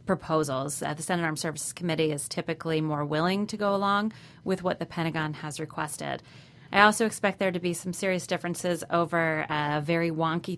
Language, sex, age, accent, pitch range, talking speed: English, female, 30-49, American, 150-175 Hz, 185 wpm